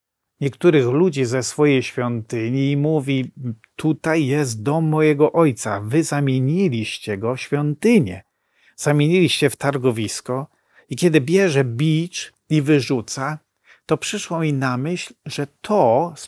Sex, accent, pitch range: male, native, 125-160 Hz